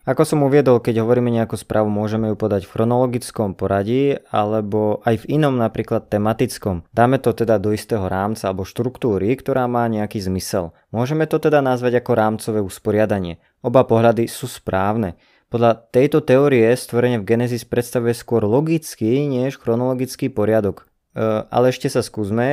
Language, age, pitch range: Slovak, 20-39, 105-125 Hz